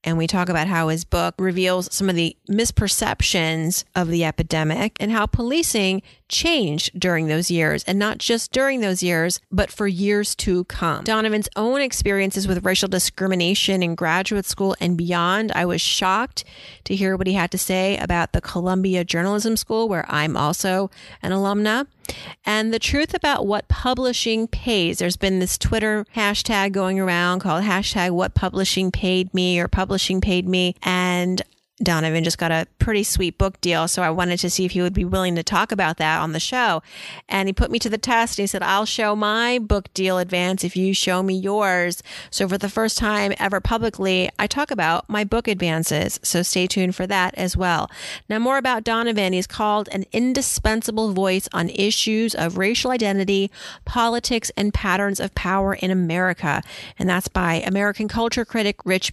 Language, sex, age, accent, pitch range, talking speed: English, female, 30-49, American, 180-215 Hz, 185 wpm